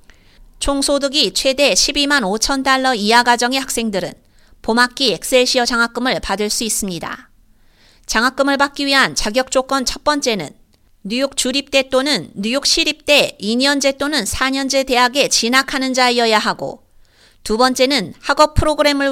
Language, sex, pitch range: Korean, female, 215-275 Hz